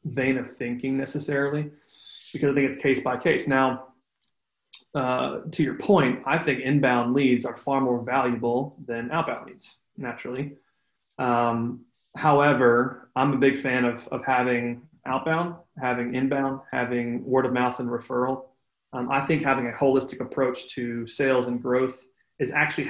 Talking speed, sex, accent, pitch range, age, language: 155 wpm, male, American, 125-135 Hz, 30-49, English